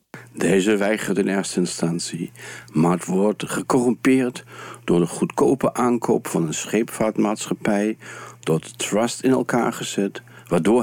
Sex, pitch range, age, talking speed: male, 110-145 Hz, 60-79, 125 wpm